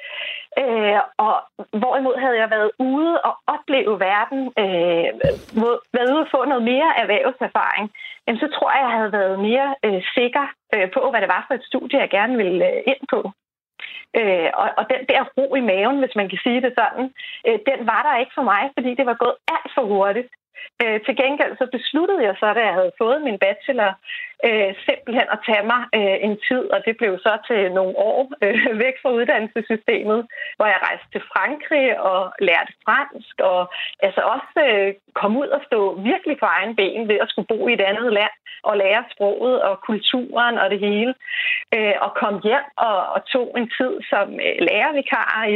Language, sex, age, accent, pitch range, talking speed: Danish, female, 30-49, native, 210-275 Hz, 185 wpm